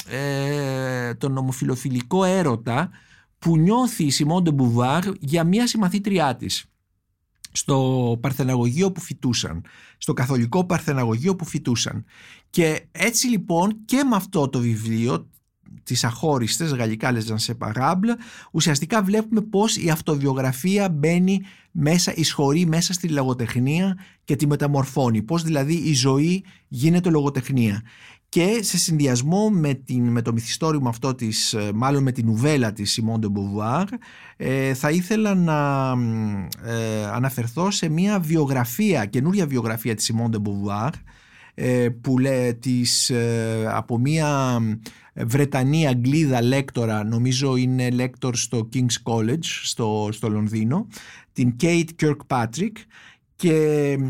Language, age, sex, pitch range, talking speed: Greek, 50-69, male, 120-165 Hz, 125 wpm